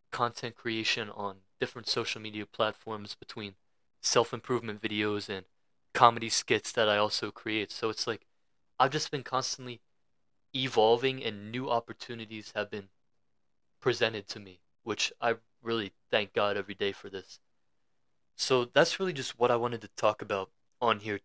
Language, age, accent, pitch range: English, 20-39, American, 100-125 Hz